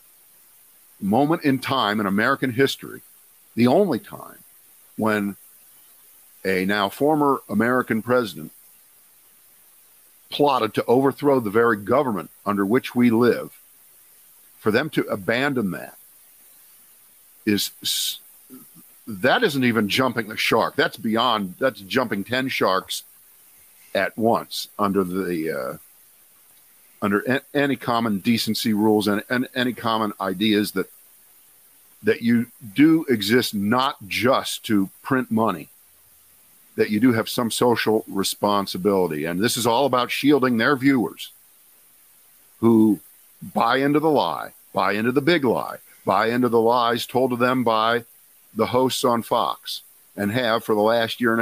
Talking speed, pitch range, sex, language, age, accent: 130 wpm, 105-130 Hz, male, English, 50-69, American